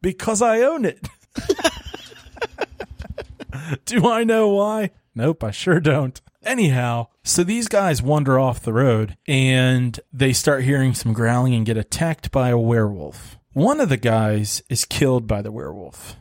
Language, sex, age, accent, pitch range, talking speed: English, male, 30-49, American, 115-155 Hz, 150 wpm